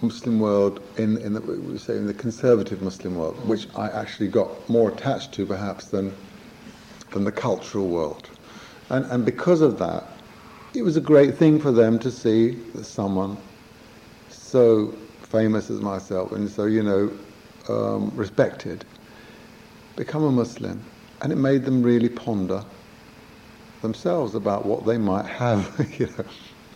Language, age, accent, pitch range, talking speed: English, 50-69, British, 105-135 Hz, 150 wpm